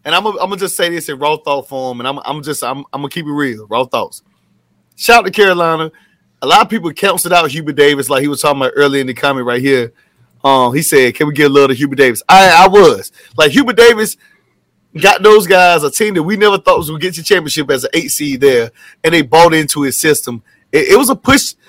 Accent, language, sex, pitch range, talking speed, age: American, English, male, 140-215 Hz, 255 wpm, 30-49